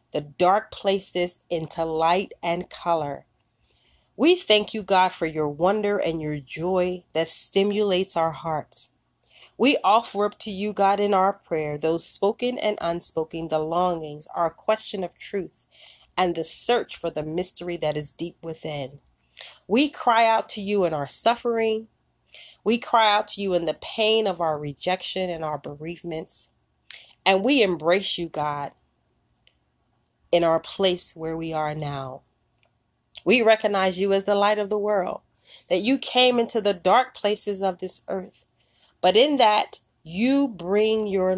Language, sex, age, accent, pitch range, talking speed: English, female, 30-49, American, 160-205 Hz, 160 wpm